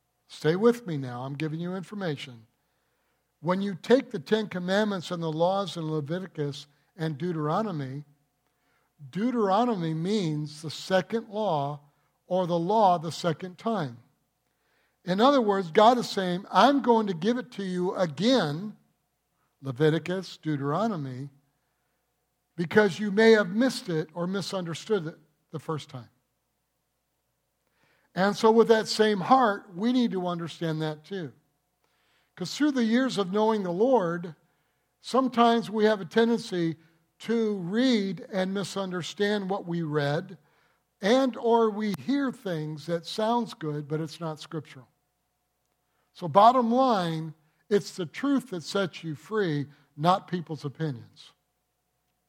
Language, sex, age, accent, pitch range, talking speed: English, male, 60-79, American, 155-215 Hz, 135 wpm